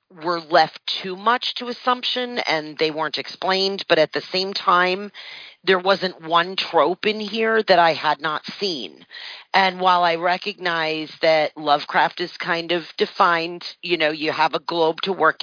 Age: 40-59